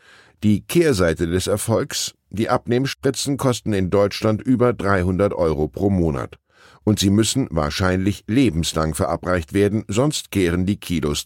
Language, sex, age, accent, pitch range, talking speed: German, male, 10-29, German, 90-120 Hz, 135 wpm